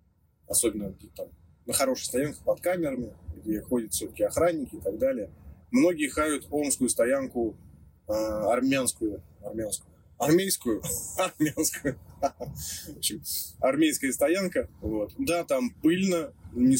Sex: male